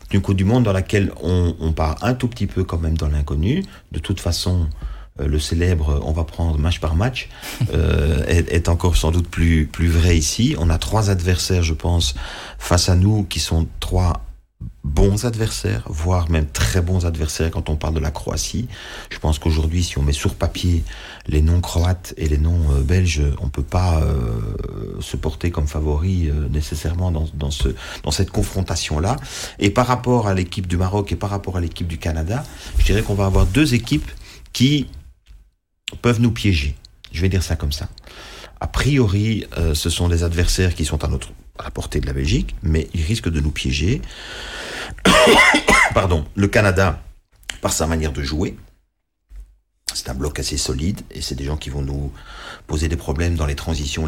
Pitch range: 75-95 Hz